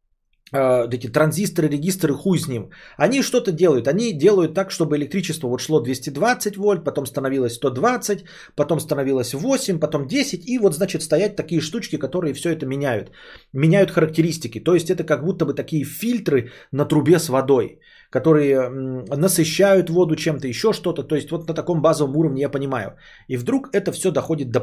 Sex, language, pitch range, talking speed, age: male, Bulgarian, 130-170 Hz, 175 wpm, 30-49